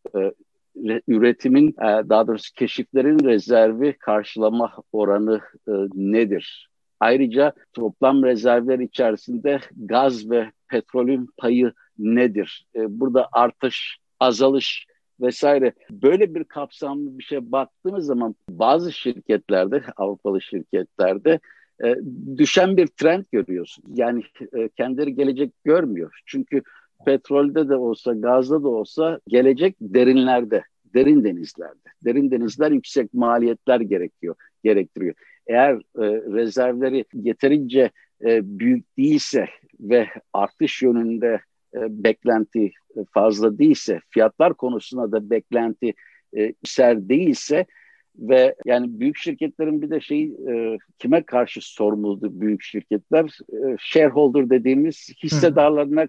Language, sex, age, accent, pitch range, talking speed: Turkish, male, 60-79, native, 115-155 Hz, 110 wpm